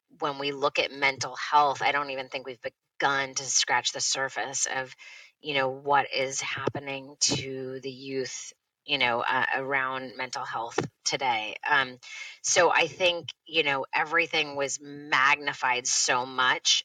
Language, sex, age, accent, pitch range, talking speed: English, female, 30-49, American, 135-175 Hz, 155 wpm